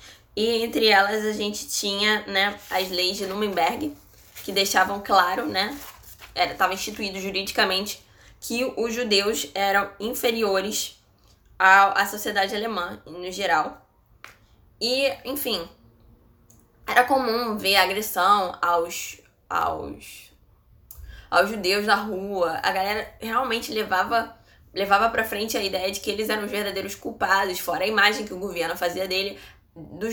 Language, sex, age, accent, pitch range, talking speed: Portuguese, female, 10-29, Brazilian, 185-220 Hz, 130 wpm